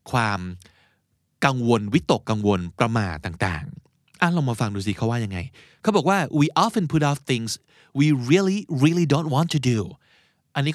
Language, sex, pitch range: Thai, male, 115-160 Hz